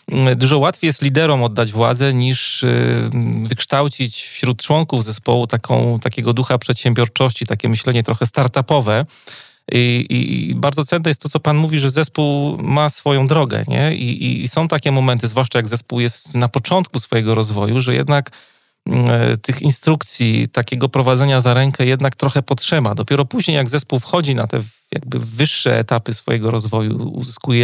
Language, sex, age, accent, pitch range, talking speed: Polish, male, 30-49, native, 115-135 Hz, 160 wpm